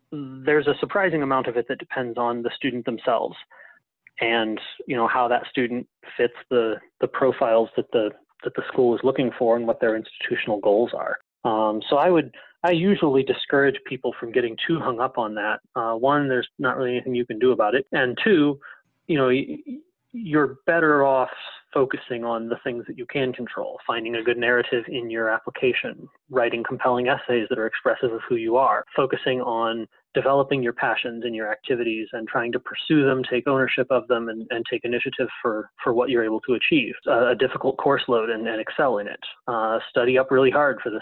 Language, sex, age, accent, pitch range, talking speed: English, male, 30-49, American, 115-140 Hz, 205 wpm